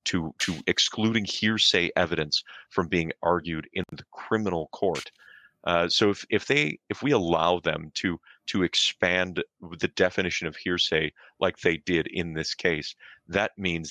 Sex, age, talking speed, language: male, 30-49, 155 wpm, English